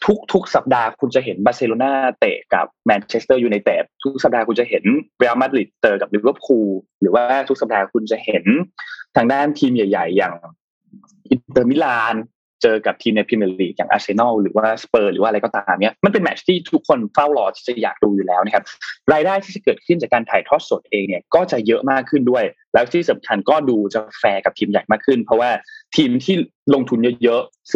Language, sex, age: Thai, male, 20-39